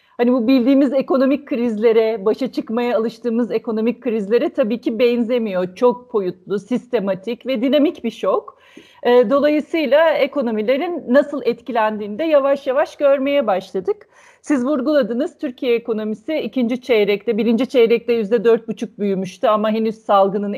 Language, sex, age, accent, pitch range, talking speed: Turkish, female, 40-59, native, 205-265 Hz, 130 wpm